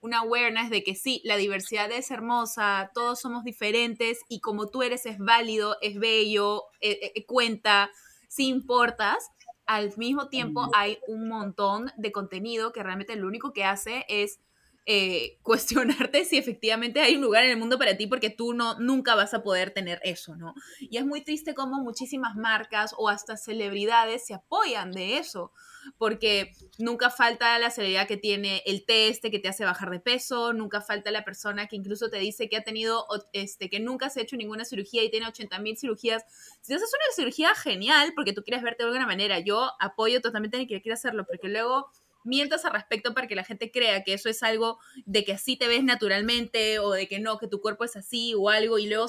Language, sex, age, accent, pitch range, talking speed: Spanish, female, 20-39, Venezuelan, 210-245 Hz, 205 wpm